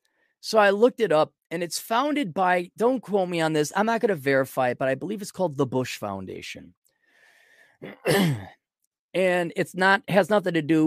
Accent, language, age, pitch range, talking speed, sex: American, English, 30-49, 135-220 Hz, 200 wpm, male